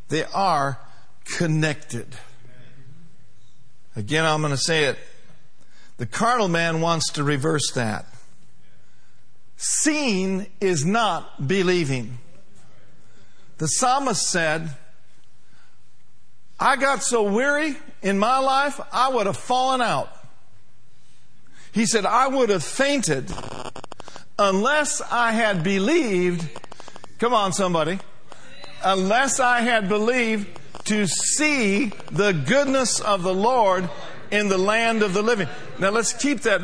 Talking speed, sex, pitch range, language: 115 wpm, male, 160-240 Hz, English